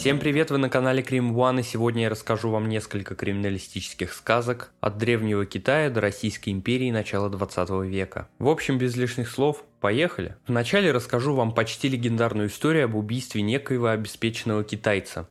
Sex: male